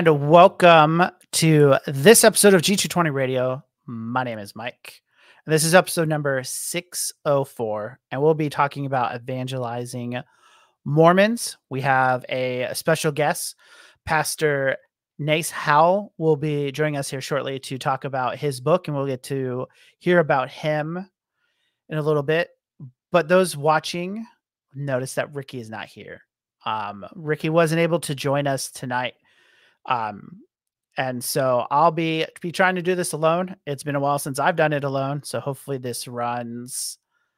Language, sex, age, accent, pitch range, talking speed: English, male, 30-49, American, 130-170 Hz, 155 wpm